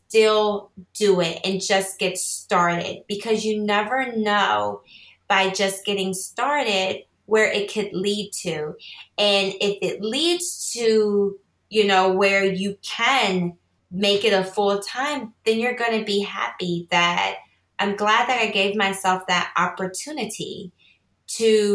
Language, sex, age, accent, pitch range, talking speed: English, female, 20-39, American, 185-215 Hz, 140 wpm